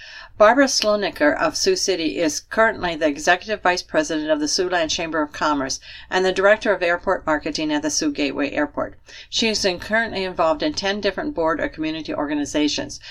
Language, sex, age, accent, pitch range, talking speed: English, female, 60-79, American, 160-250 Hz, 185 wpm